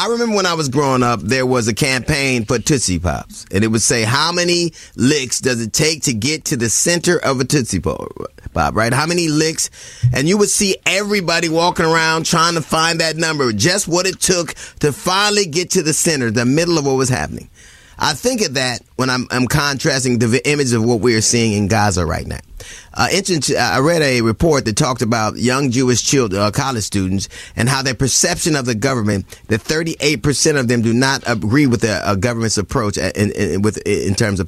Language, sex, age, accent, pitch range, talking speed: English, male, 30-49, American, 110-150 Hz, 210 wpm